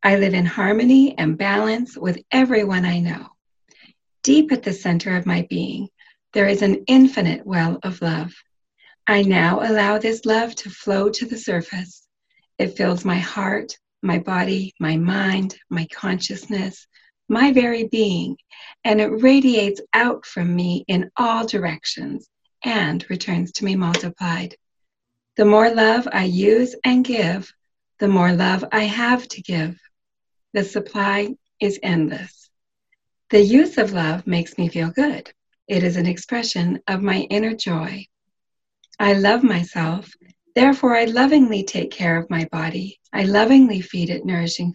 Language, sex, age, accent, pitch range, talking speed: English, female, 40-59, American, 175-225 Hz, 150 wpm